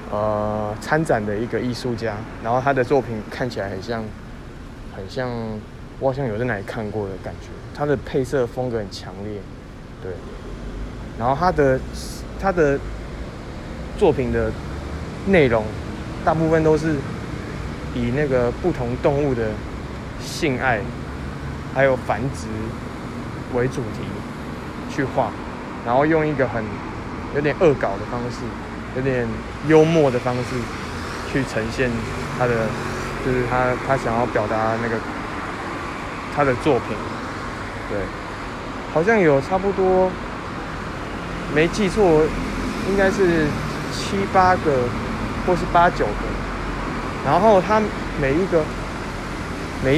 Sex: male